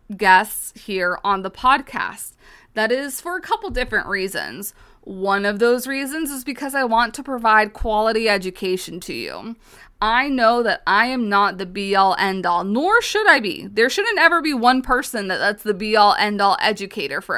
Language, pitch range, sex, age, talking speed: English, 200-265 Hz, female, 20-39, 180 wpm